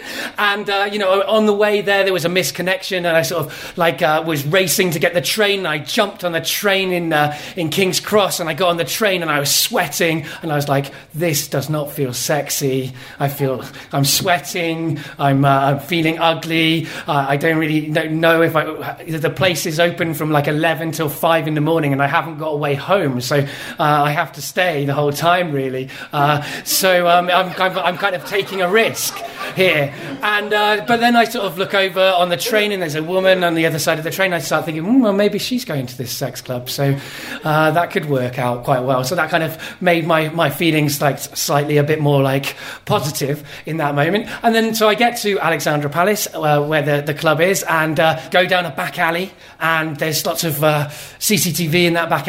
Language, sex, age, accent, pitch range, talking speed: English, male, 30-49, British, 145-180 Hz, 230 wpm